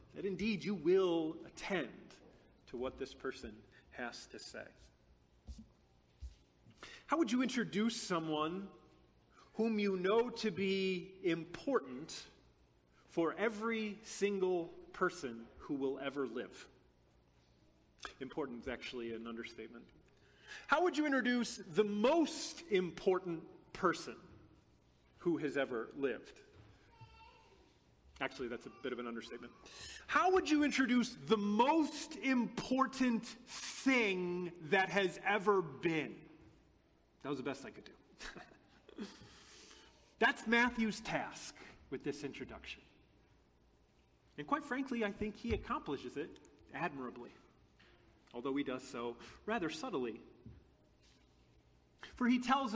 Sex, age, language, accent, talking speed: male, 30-49, English, American, 110 wpm